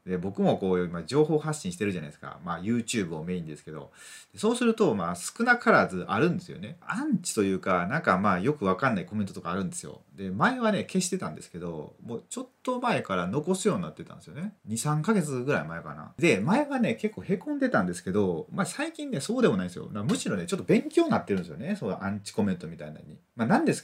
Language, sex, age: Japanese, male, 30-49